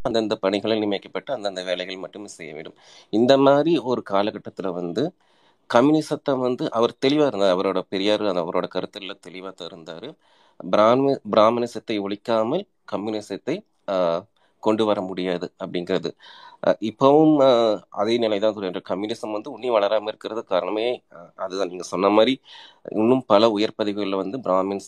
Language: Tamil